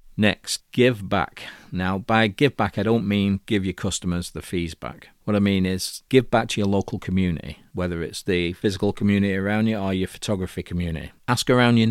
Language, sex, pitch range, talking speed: English, male, 90-115 Hz, 200 wpm